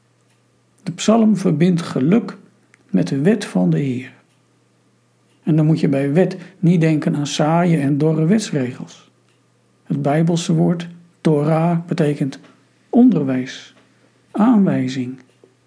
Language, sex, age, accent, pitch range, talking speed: Dutch, male, 60-79, Dutch, 145-180 Hz, 115 wpm